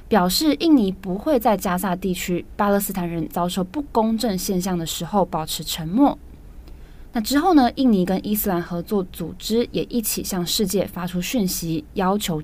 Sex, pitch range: female, 175-225 Hz